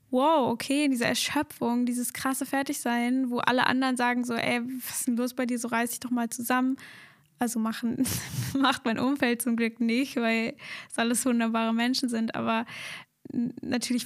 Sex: female